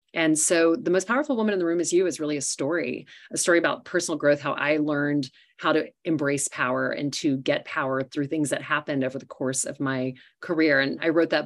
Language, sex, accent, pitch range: English, female, American, 135-165 Hz